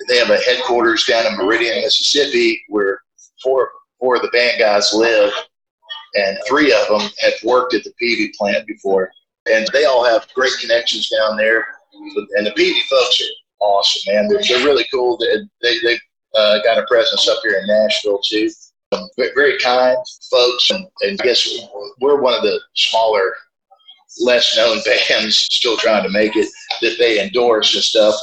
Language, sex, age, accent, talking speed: English, male, 50-69, American, 175 wpm